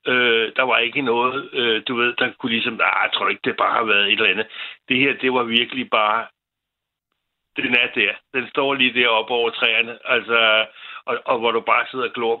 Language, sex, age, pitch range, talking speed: Danish, male, 60-79, 115-130 Hz, 225 wpm